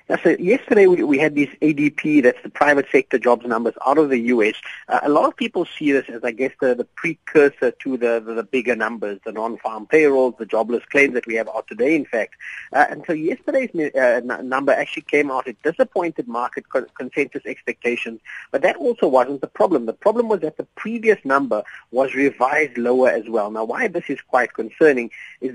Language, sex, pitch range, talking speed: English, male, 120-155 Hz, 210 wpm